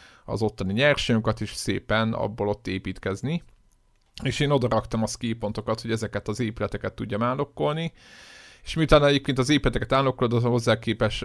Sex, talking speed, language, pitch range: male, 145 wpm, Hungarian, 105-125 Hz